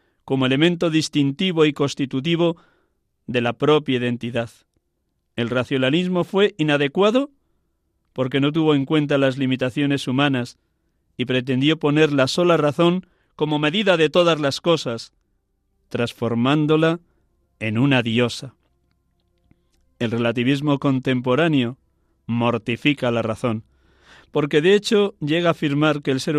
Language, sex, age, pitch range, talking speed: Spanish, male, 40-59, 120-150 Hz, 120 wpm